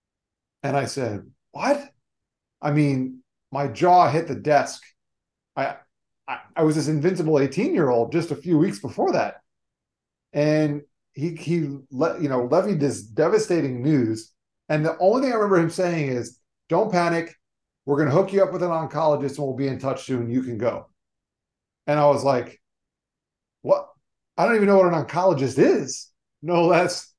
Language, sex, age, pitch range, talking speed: English, male, 30-49, 135-175 Hz, 170 wpm